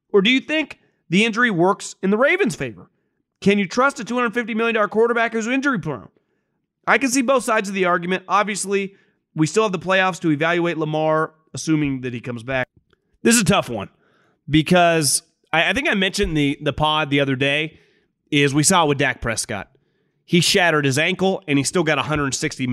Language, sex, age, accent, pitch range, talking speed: English, male, 30-49, American, 145-195 Hz, 200 wpm